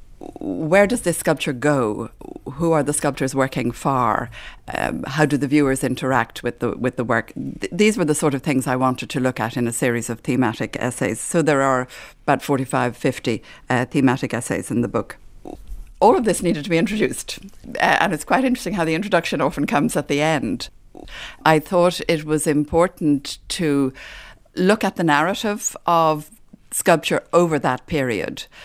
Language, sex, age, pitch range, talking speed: English, female, 60-79, 125-155 Hz, 180 wpm